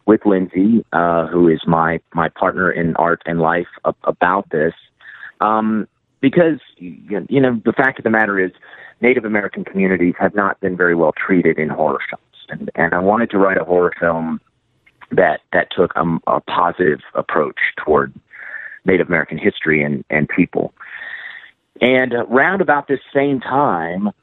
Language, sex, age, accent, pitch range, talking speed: English, male, 30-49, American, 85-115 Hz, 165 wpm